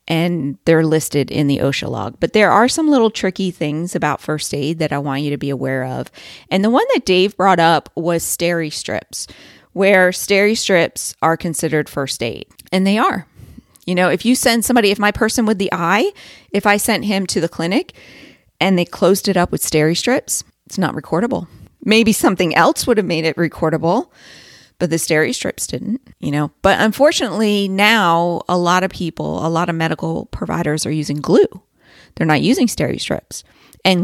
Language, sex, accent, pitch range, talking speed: English, female, American, 160-220 Hz, 195 wpm